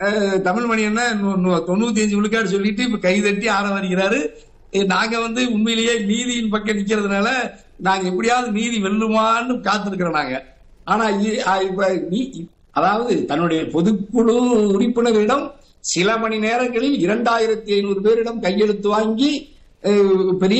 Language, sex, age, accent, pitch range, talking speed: Tamil, male, 60-79, native, 200-245 Hz, 50 wpm